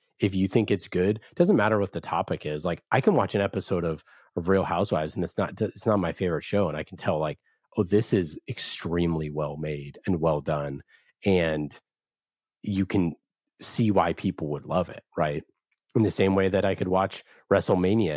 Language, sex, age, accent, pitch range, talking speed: English, male, 30-49, American, 85-110 Hz, 200 wpm